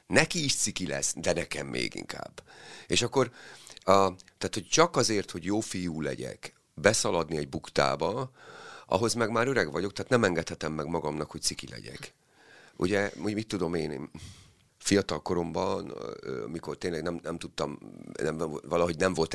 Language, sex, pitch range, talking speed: Hungarian, male, 80-115 Hz, 150 wpm